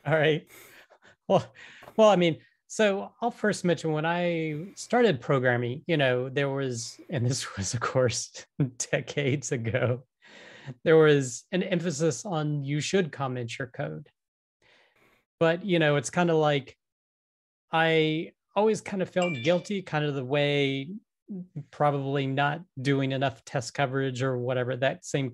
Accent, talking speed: American, 145 wpm